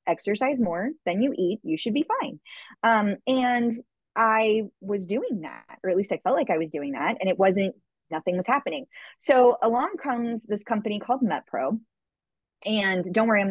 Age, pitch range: 30-49, 180-235 Hz